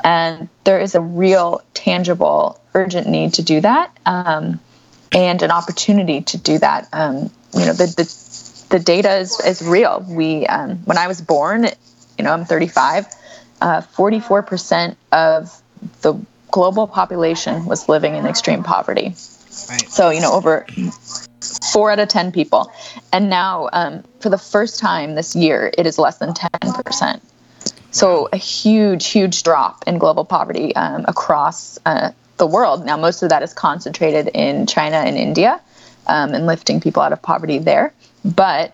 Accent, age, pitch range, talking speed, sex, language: American, 20-39, 165-200 Hz, 160 wpm, female, English